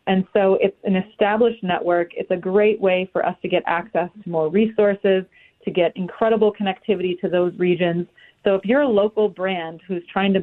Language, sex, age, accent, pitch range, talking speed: English, female, 30-49, American, 180-210 Hz, 195 wpm